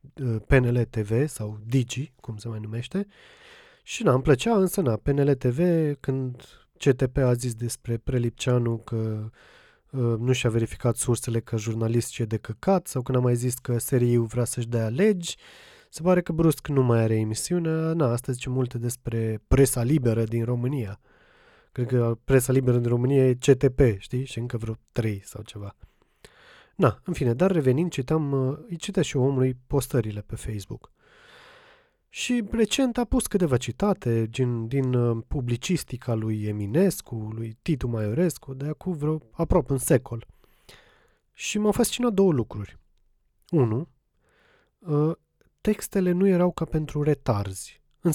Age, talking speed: 20-39, 155 wpm